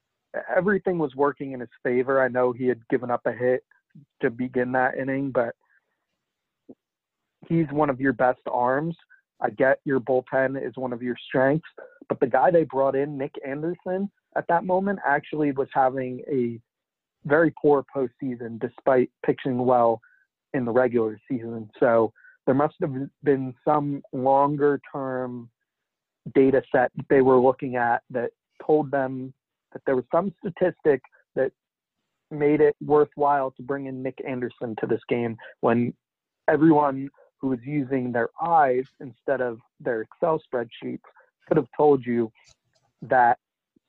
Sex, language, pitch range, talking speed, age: male, English, 125-145 Hz, 150 wpm, 40-59